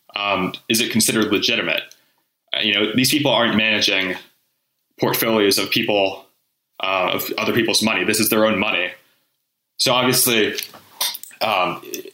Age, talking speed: 20-39, 135 wpm